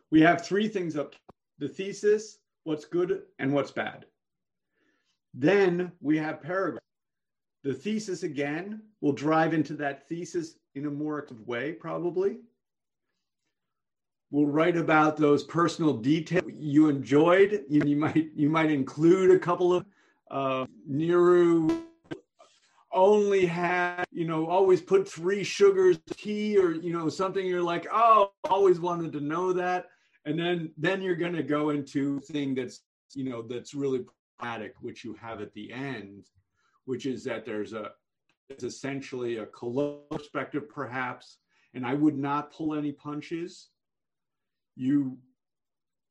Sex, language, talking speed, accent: male, English, 145 wpm, American